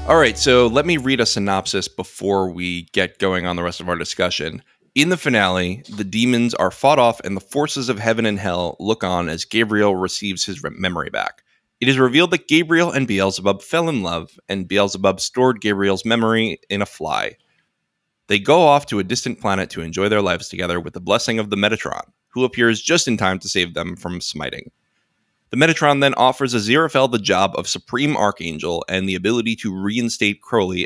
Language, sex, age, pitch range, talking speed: English, male, 20-39, 95-120 Hz, 200 wpm